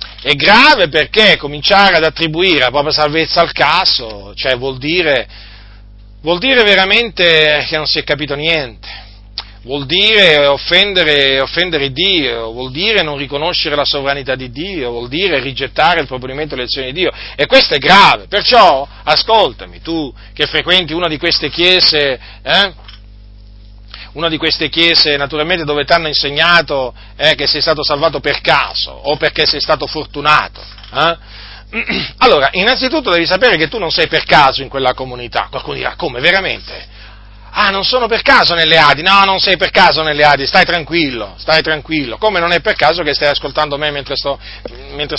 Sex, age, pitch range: male, 40-59, 130-175 Hz